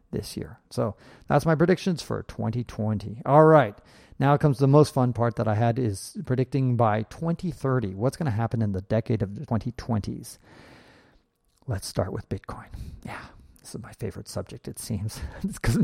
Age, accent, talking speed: 40-59, American, 175 wpm